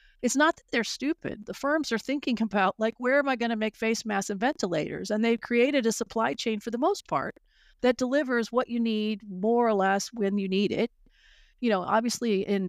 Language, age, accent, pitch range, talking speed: English, 40-59, American, 205-250 Hz, 220 wpm